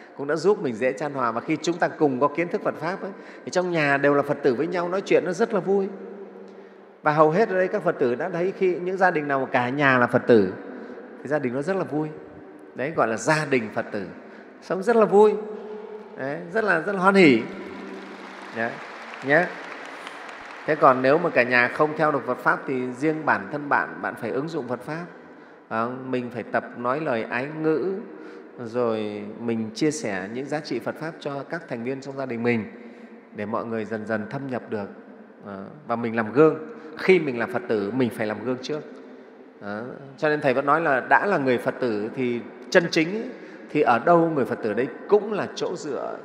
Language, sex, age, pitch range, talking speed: Vietnamese, male, 30-49, 115-165 Hz, 225 wpm